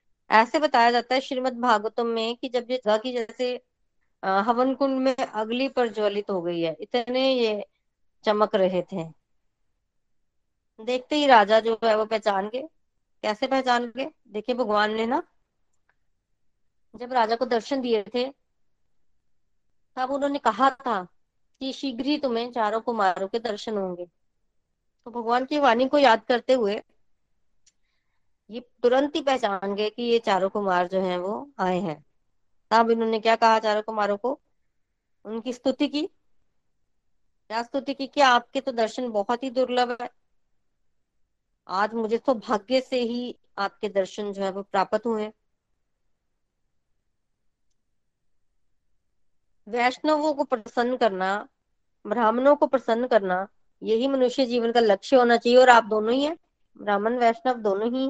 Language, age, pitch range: Hindi, 20-39, 210-255 Hz